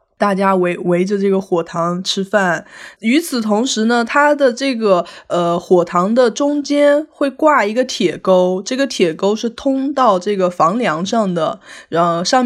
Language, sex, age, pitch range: Chinese, female, 20-39, 180-240 Hz